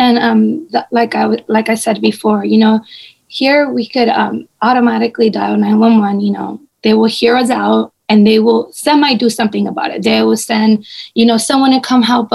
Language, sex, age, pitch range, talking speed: English, female, 20-39, 215-245 Hz, 210 wpm